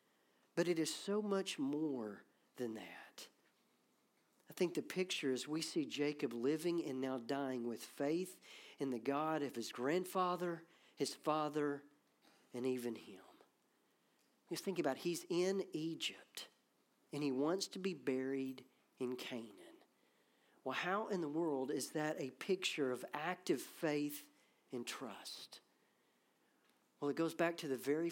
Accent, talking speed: American, 145 wpm